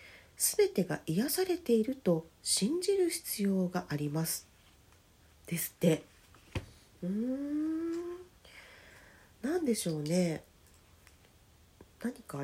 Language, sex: Japanese, female